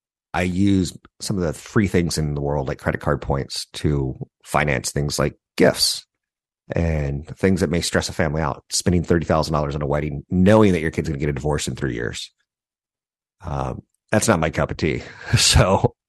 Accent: American